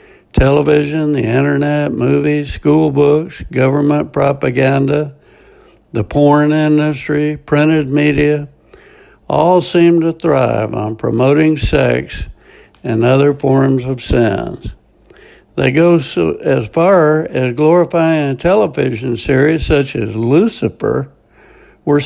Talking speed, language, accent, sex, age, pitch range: 105 wpm, English, American, male, 60-79, 120-155 Hz